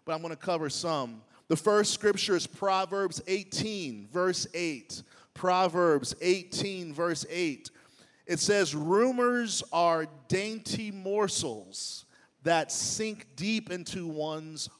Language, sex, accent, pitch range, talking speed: English, male, American, 155-190 Hz, 120 wpm